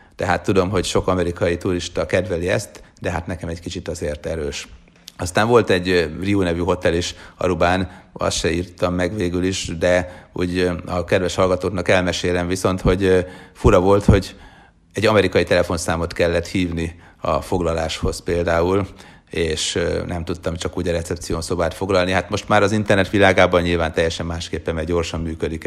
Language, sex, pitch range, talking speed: Hungarian, male, 85-95 Hz, 160 wpm